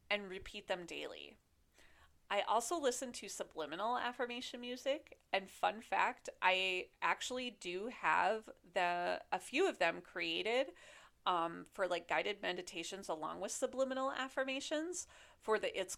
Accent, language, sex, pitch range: American, English, female, 175-245 Hz